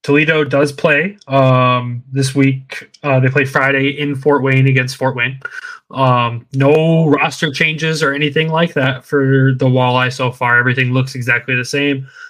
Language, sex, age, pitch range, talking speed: English, male, 20-39, 125-140 Hz, 165 wpm